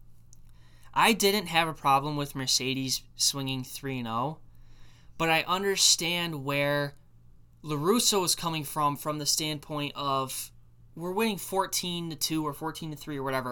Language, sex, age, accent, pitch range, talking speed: English, male, 10-29, American, 120-175 Hz, 135 wpm